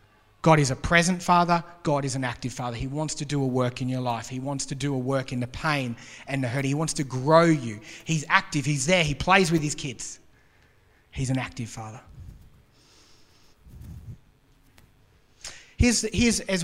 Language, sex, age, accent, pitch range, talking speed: English, male, 30-49, Australian, 140-215 Hz, 190 wpm